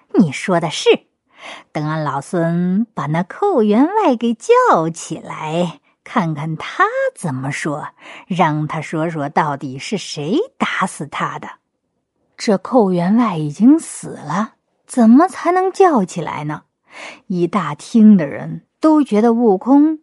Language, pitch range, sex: Chinese, 160-265 Hz, female